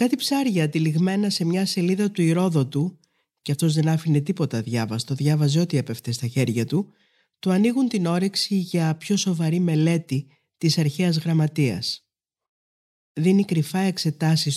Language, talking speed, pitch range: Greek, 145 wpm, 140-180 Hz